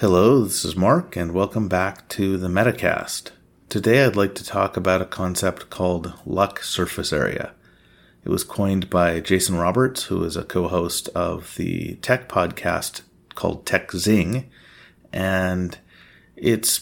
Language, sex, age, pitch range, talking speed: English, male, 30-49, 90-105 Hz, 145 wpm